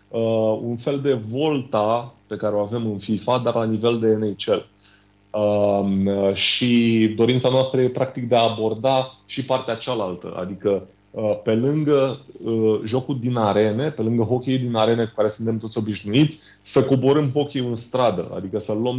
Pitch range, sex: 110-130 Hz, male